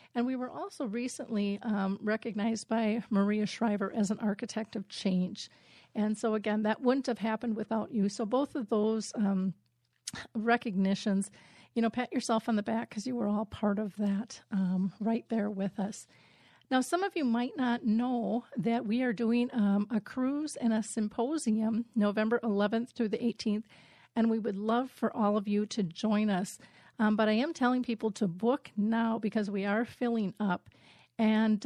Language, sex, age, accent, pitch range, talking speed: English, female, 40-59, American, 205-235 Hz, 185 wpm